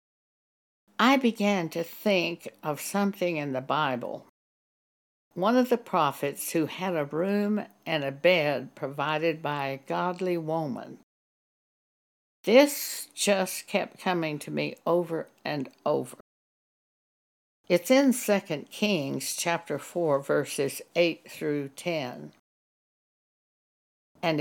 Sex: female